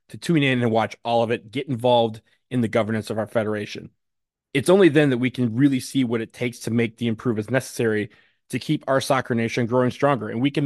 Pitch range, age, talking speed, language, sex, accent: 115-135 Hz, 20-39, 235 wpm, English, male, American